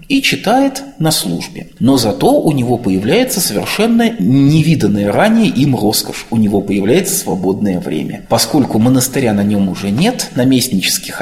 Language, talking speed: Russian, 140 wpm